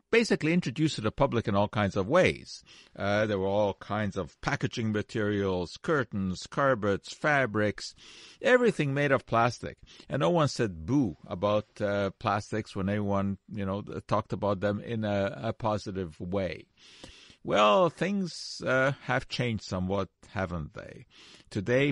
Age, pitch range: 50-69, 95-115 Hz